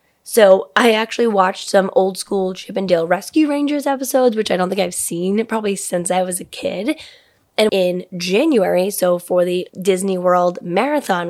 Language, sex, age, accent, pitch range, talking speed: English, female, 10-29, American, 185-250 Hz, 170 wpm